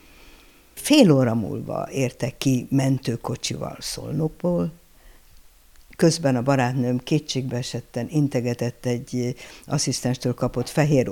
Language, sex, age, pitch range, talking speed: Hungarian, female, 60-79, 120-150 Hz, 90 wpm